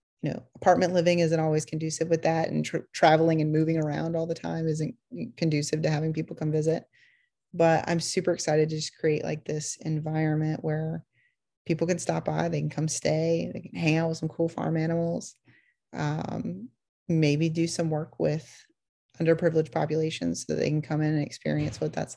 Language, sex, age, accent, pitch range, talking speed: English, female, 30-49, American, 155-185 Hz, 190 wpm